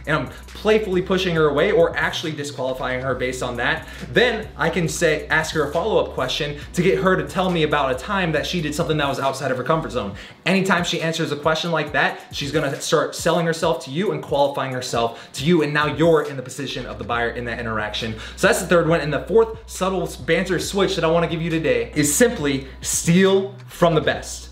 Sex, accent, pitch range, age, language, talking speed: male, American, 145-195 Hz, 20-39, English, 235 wpm